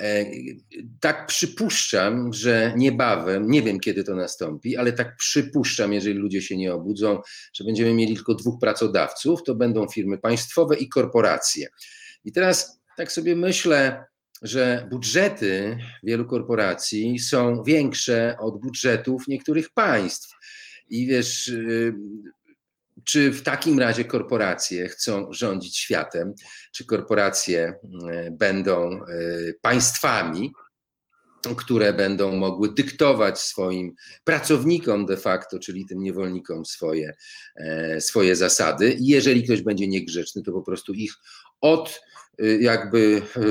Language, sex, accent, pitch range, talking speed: Polish, male, native, 100-150 Hz, 115 wpm